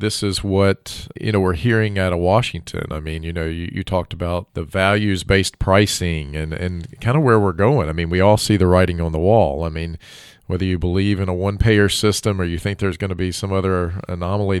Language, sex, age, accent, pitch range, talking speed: English, male, 40-59, American, 90-105 Hz, 235 wpm